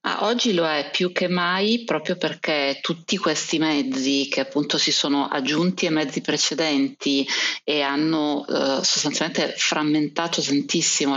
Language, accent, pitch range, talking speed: Italian, native, 140-155 Hz, 140 wpm